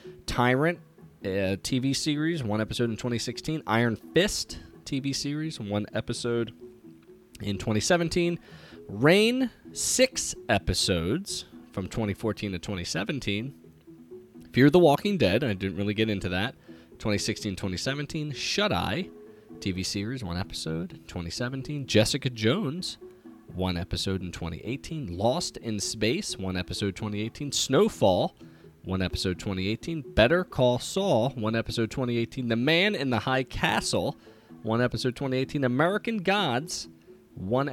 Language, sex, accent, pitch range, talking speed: English, male, American, 95-135 Hz, 120 wpm